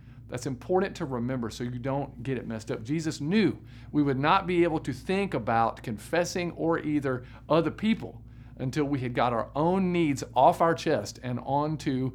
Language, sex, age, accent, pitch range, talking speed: English, male, 50-69, American, 120-155 Hz, 190 wpm